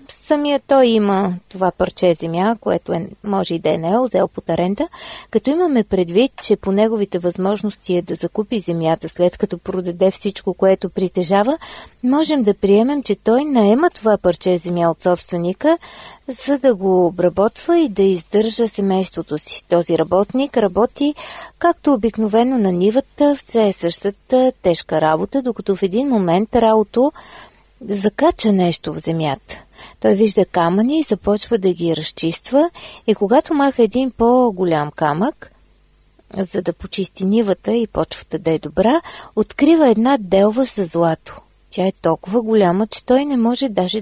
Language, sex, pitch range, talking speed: Bulgarian, female, 180-245 Hz, 150 wpm